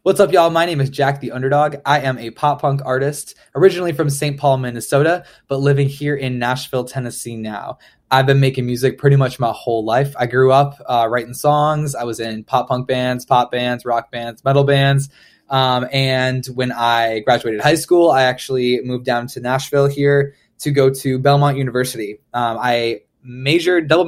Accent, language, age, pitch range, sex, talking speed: American, English, 20-39, 120-140 Hz, male, 190 wpm